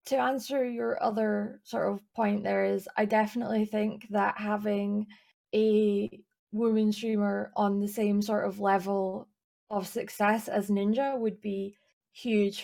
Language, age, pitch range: English, 20-39, 200-225 Hz